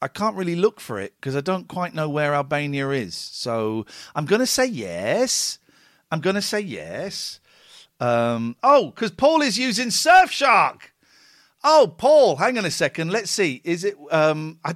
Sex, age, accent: male, 50-69, British